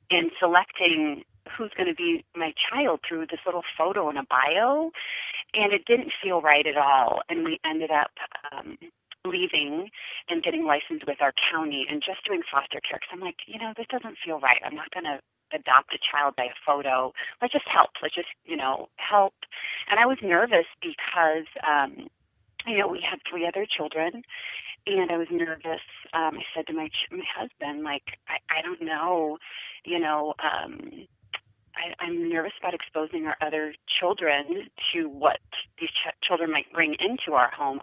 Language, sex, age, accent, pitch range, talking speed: English, female, 40-59, American, 155-215 Hz, 185 wpm